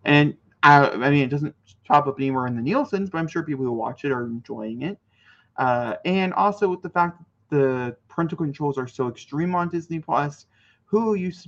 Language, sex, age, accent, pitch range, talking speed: English, male, 20-39, American, 115-160 Hz, 215 wpm